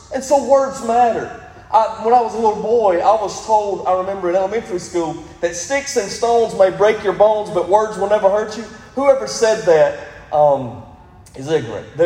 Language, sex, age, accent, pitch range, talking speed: English, male, 40-59, American, 195-275 Hz, 195 wpm